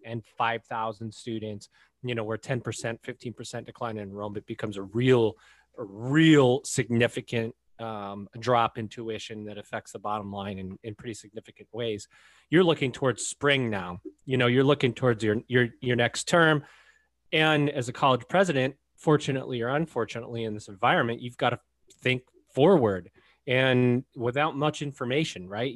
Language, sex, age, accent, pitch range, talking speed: English, male, 30-49, American, 110-135 Hz, 155 wpm